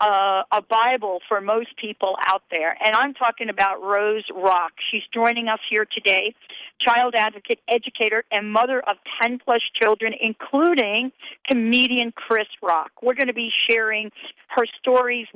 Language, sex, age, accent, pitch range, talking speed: English, female, 50-69, American, 195-245 Hz, 150 wpm